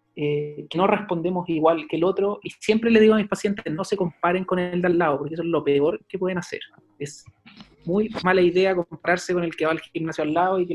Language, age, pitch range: Spanish, 30-49, 160-190 Hz